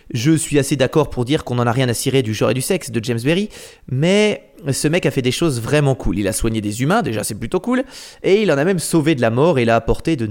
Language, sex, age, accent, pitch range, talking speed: French, male, 20-39, French, 115-160 Hz, 305 wpm